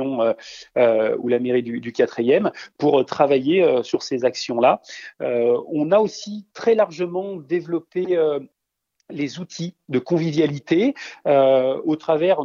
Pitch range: 130-180 Hz